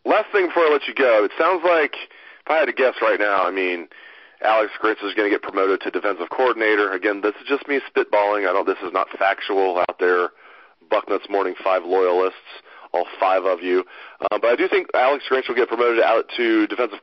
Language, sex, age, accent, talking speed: English, male, 40-59, American, 225 wpm